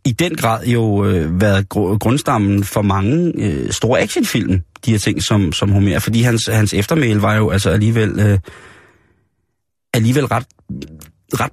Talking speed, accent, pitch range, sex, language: 155 wpm, native, 100-125 Hz, male, Danish